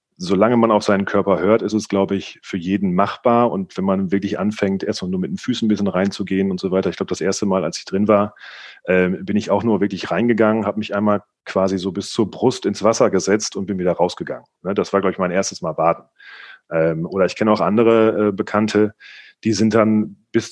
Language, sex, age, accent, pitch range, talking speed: German, male, 40-59, German, 95-115 Hz, 225 wpm